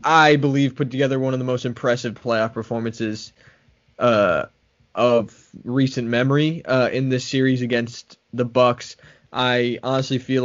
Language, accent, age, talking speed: English, American, 20-39, 145 wpm